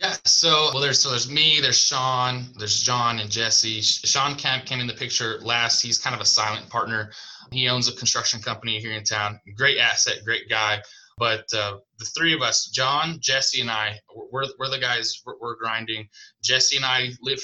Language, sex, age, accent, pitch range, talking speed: English, male, 20-39, American, 115-135 Hz, 200 wpm